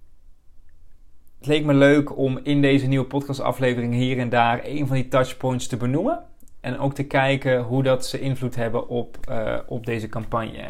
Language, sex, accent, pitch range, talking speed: Dutch, male, Dutch, 115-135 Hz, 180 wpm